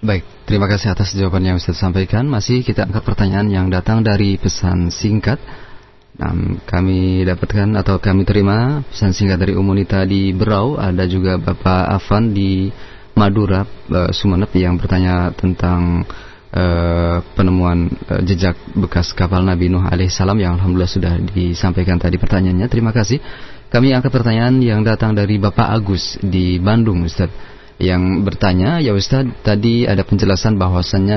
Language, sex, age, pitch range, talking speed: Malay, male, 30-49, 95-110 Hz, 150 wpm